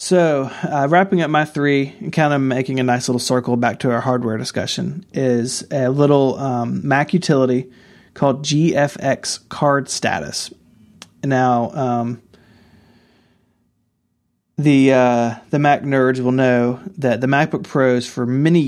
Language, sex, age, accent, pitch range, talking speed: English, male, 30-49, American, 120-145 Hz, 145 wpm